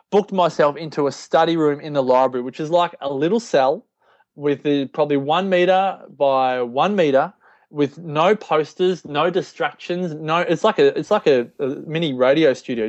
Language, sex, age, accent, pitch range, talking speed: English, male, 20-39, Australian, 145-185 Hz, 175 wpm